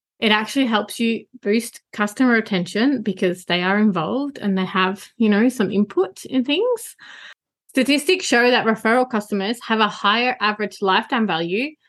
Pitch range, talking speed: 200-245 Hz, 155 wpm